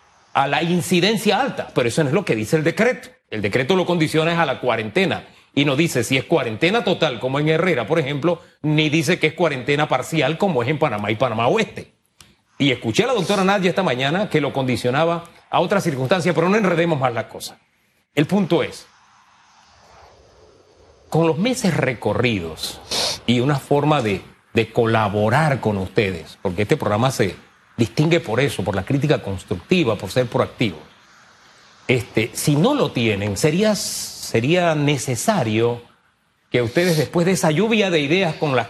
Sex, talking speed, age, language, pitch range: male, 170 wpm, 40-59, Spanish, 125-170 Hz